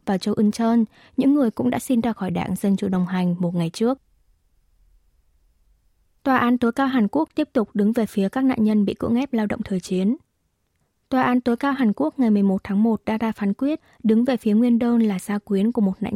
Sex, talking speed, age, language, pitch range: female, 240 wpm, 20-39, Vietnamese, 195-245 Hz